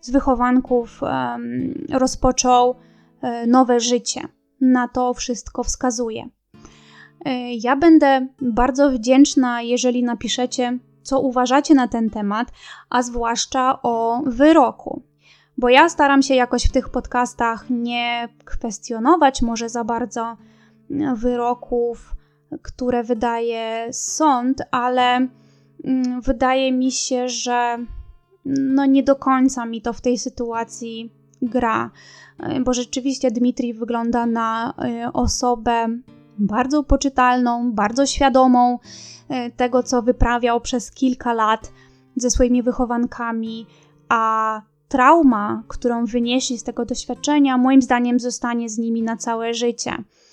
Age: 20-39